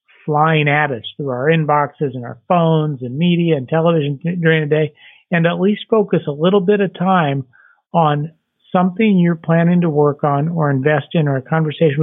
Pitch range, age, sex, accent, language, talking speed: 140-165 Hz, 50-69, male, American, English, 190 wpm